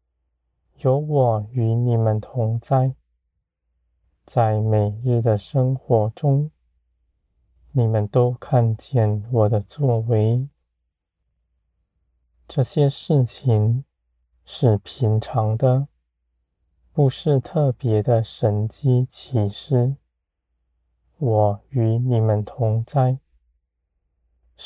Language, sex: Chinese, male